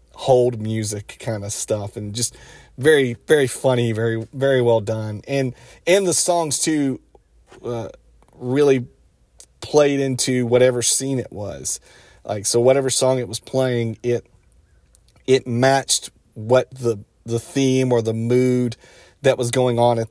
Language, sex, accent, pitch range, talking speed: English, male, American, 110-130 Hz, 145 wpm